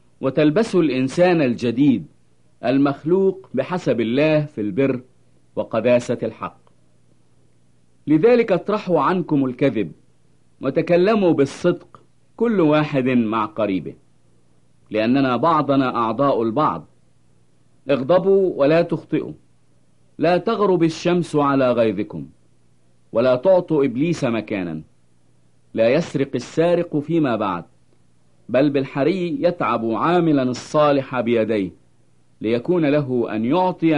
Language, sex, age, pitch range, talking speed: English, male, 50-69, 110-160 Hz, 90 wpm